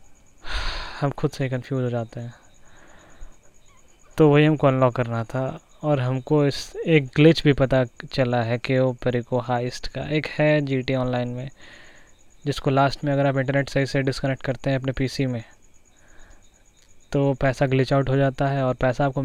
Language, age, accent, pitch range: Hindi, 20-39, native, 130-150 Hz